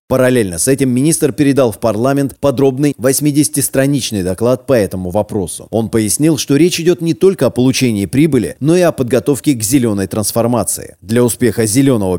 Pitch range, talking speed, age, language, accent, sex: 115-150 Hz, 160 wpm, 30-49, Russian, native, male